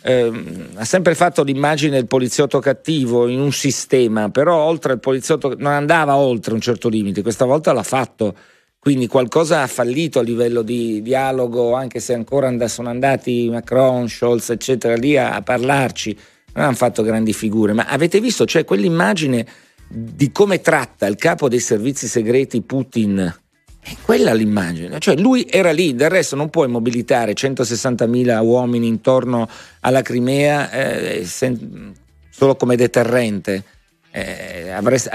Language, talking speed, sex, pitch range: Italian, 145 wpm, male, 115-145 Hz